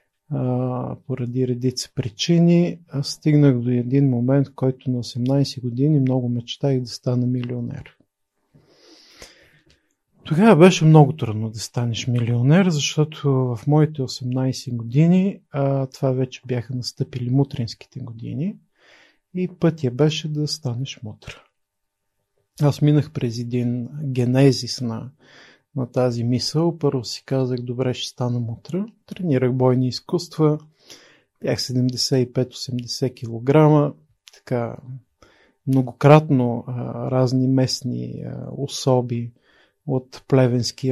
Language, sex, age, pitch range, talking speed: Bulgarian, male, 40-59, 120-140 Hz, 105 wpm